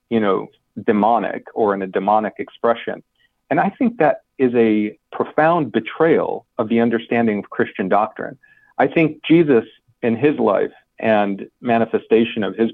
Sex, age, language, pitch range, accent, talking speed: male, 40-59, English, 110-145 Hz, American, 150 wpm